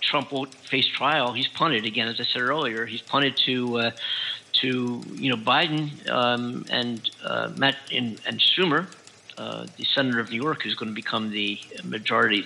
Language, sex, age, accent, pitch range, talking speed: English, male, 50-69, American, 115-150 Hz, 185 wpm